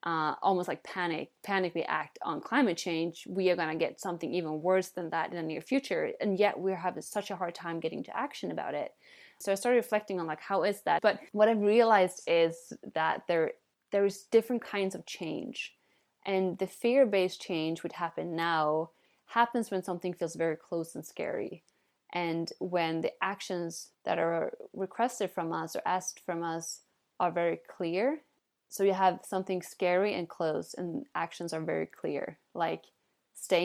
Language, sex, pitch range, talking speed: English, female, 170-200 Hz, 185 wpm